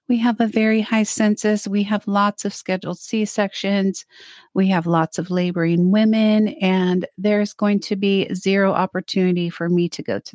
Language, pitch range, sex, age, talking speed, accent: English, 185-220 Hz, female, 30-49, 175 wpm, American